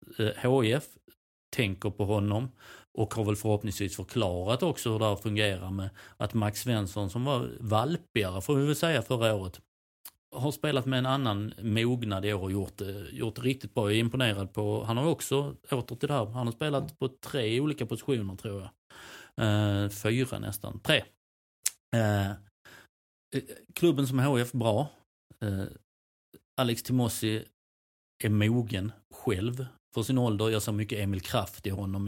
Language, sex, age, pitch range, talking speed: Swedish, male, 30-49, 100-125 Hz, 160 wpm